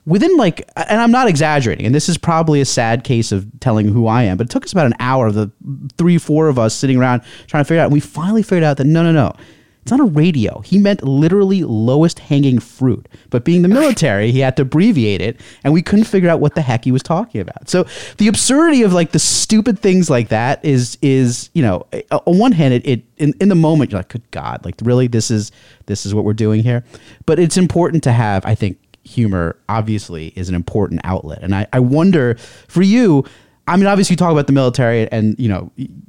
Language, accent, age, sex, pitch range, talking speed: English, American, 30-49, male, 115-175 Hz, 240 wpm